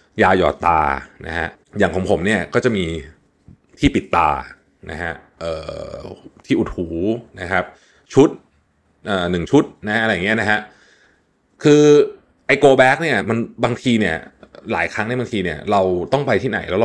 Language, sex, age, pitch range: Thai, male, 20-39, 85-125 Hz